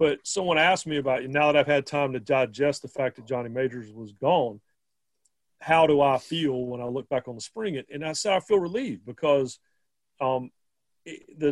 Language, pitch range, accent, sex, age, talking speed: English, 125-150 Hz, American, male, 40-59, 205 wpm